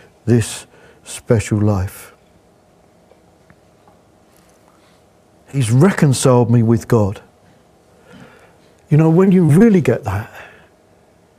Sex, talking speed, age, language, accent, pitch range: male, 80 wpm, 50-69, English, British, 110-155 Hz